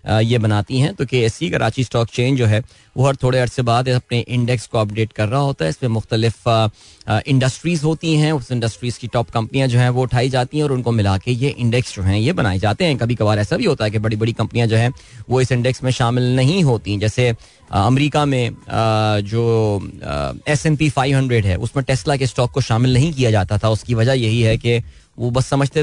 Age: 20-39